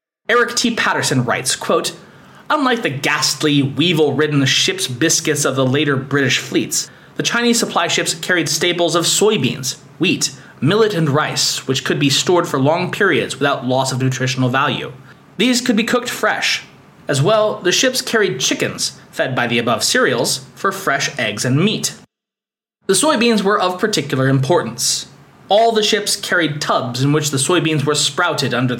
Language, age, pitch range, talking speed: English, 20-39, 140-185 Hz, 165 wpm